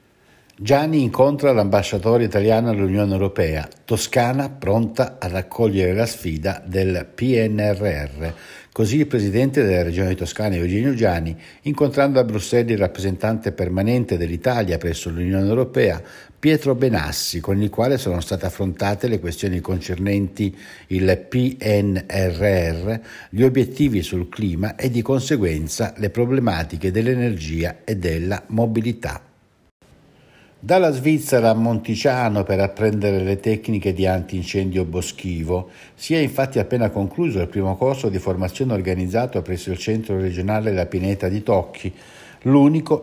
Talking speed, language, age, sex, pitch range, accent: 125 wpm, Italian, 60-79, male, 95-125 Hz, native